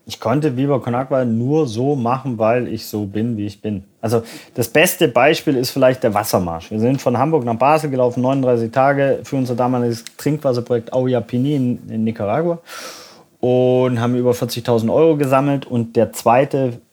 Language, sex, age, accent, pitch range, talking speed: German, male, 30-49, German, 105-135 Hz, 165 wpm